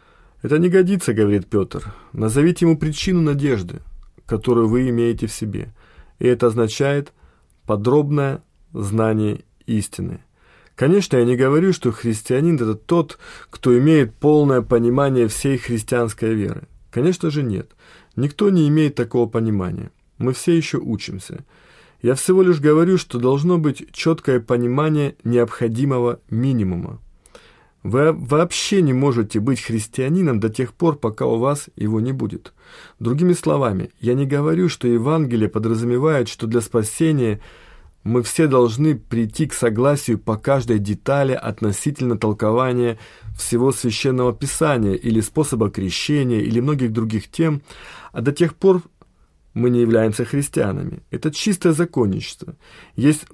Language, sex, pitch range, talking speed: Russian, male, 115-150 Hz, 130 wpm